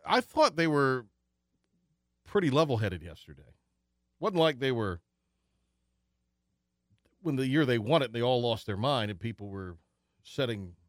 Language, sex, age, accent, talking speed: English, male, 40-59, American, 145 wpm